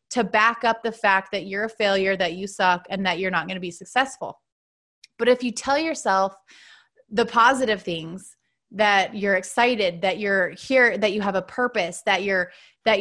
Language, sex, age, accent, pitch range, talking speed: English, female, 20-39, American, 195-250 Hz, 195 wpm